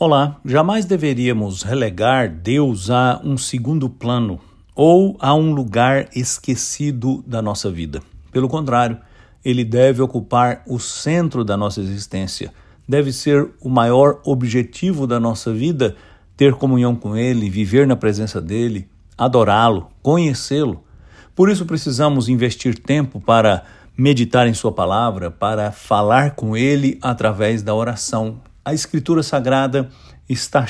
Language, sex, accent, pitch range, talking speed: English, male, Brazilian, 110-140 Hz, 130 wpm